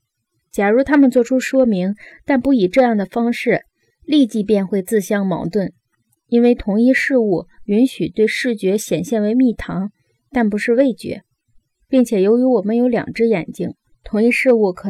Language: Chinese